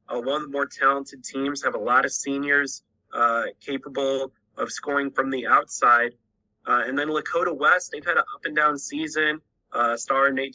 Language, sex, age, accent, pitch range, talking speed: English, male, 20-39, American, 120-140 Hz, 180 wpm